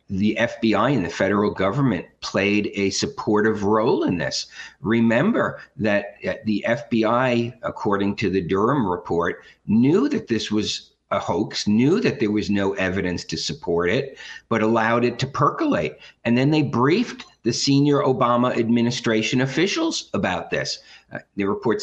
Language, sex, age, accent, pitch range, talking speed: English, male, 50-69, American, 105-145 Hz, 150 wpm